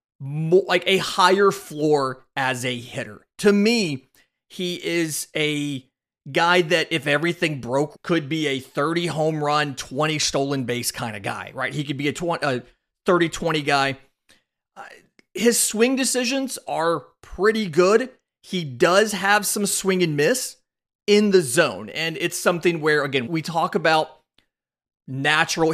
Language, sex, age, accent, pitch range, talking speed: English, male, 30-49, American, 140-175 Hz, 145 wpm